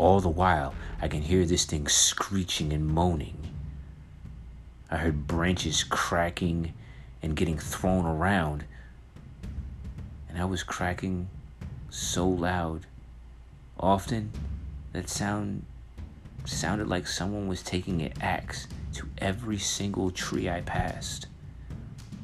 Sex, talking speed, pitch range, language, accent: male, 110 wpm, 75-90 Hz, English, American